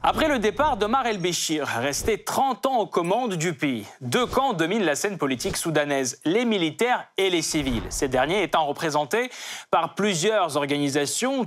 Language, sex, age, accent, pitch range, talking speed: French, male, 30-49, French, 155-230 Hz, 165 wpm